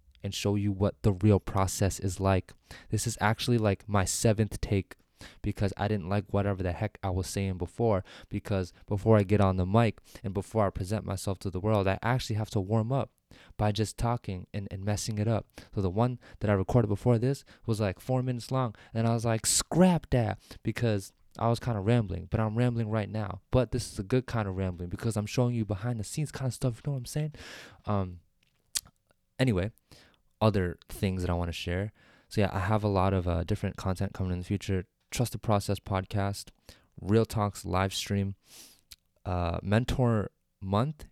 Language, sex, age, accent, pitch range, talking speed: English, male, 20-39, American, 95-115 Hz, 210 wpm